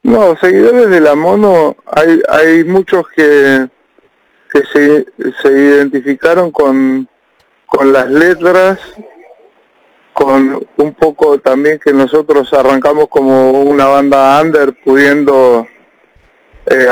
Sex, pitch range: male, 135-160 Hz